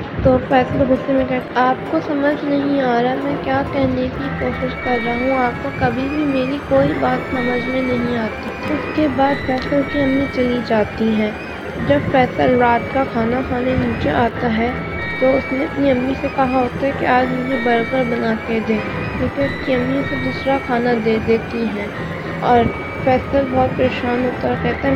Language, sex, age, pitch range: Urdu, female, 20-39, 235-265 Hz